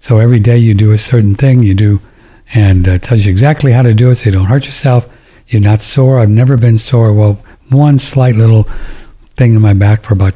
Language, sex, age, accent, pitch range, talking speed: English, male, 60-79, American, 105-130 Hz, 240 wpm